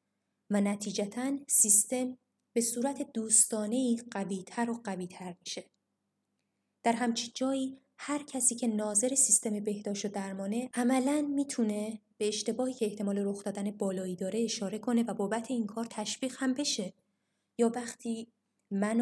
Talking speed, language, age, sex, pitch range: 140 wpm, Persian, 20-39, female, 200-230 Hz